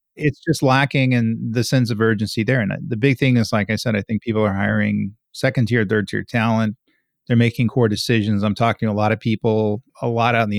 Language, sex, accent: English, male, American